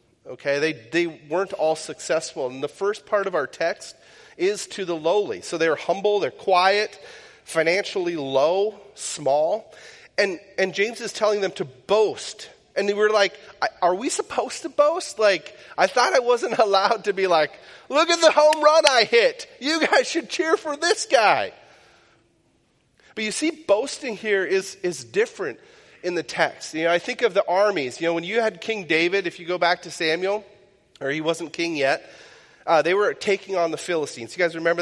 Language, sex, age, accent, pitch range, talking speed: English, male, 30-49, American, 170-250 Hz, 195 wpm